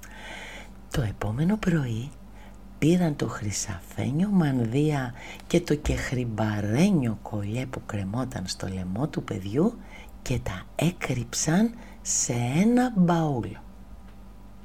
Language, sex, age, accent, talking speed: Greek, female, 60-79, native, 95 wpm